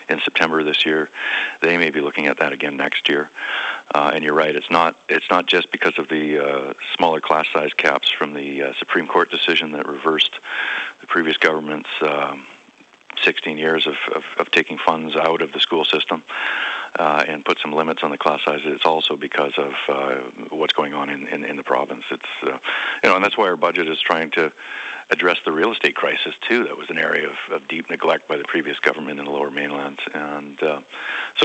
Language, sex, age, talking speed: English, male, 40-59, 215 wpm